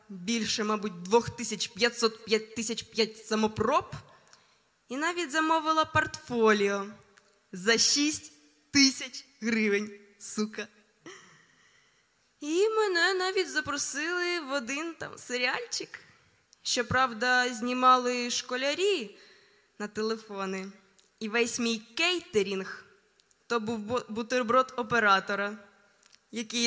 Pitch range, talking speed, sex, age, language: 215-275 Hz, 90 wpm, female, 20-39, Ukrainian